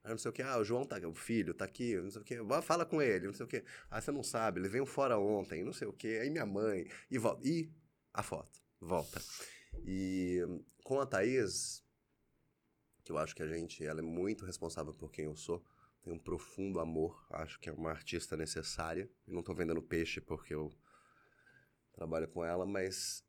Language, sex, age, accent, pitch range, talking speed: Portuguese, male, 20-39, Brazilian, 80-105 Hz, 215 wpm